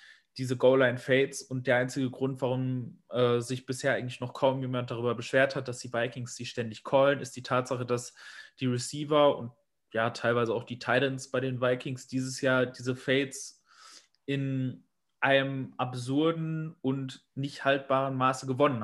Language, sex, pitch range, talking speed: German, male, 125-150 Hz, 160 wpm